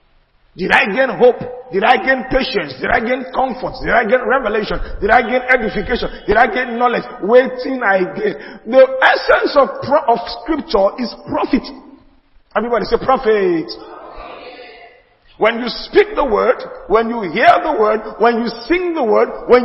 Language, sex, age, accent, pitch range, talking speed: English, male, 40-59, Nigerian, 215-275 Hz, 160 wpm